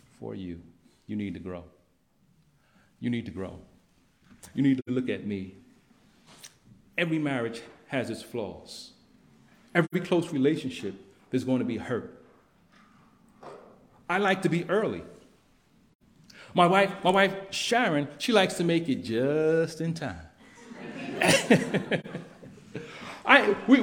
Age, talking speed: 40-59, 125 wpm